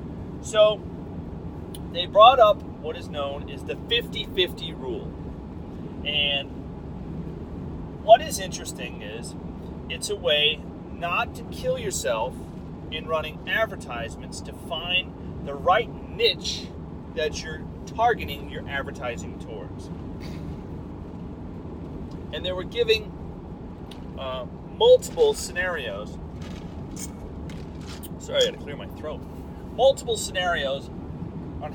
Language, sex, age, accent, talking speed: English, male, 40-59, American, 100 wpm